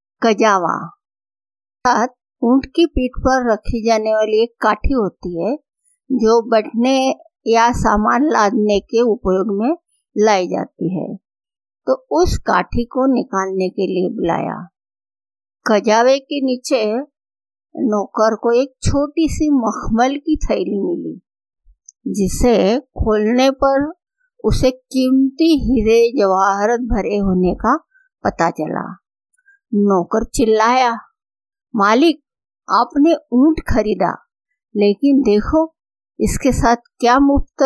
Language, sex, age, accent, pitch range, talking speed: Hindi, female, 50-69, native, 210-280 Hz, 105 wpm